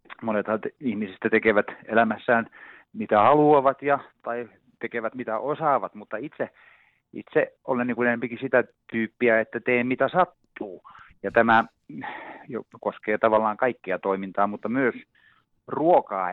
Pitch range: 110-135 Hz